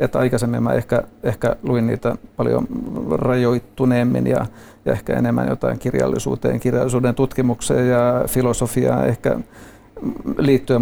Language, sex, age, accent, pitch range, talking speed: Finnish, male, 50-69, native, 115-130 Hz, 115 wpm